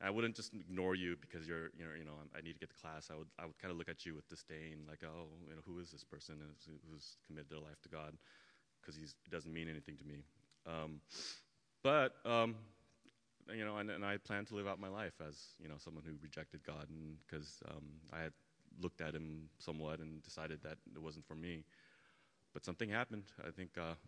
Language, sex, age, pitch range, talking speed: English, male, 30-49, 75-90 Hz, 225 wpm